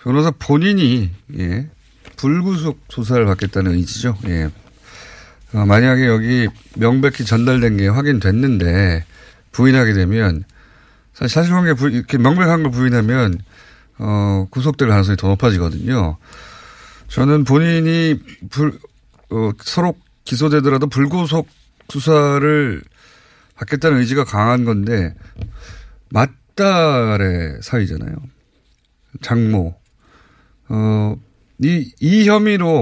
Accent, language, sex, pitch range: native, Korean, male, 105-150 Hz